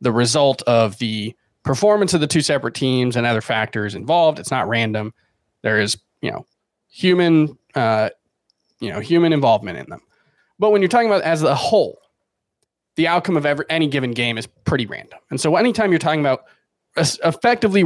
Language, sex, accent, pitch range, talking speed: English, male, American, 120-170 Hz, 180 wpm